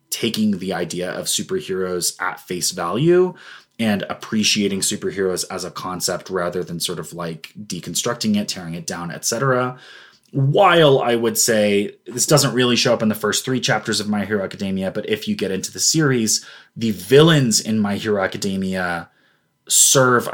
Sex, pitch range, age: male, 105-130 Hz, 20-39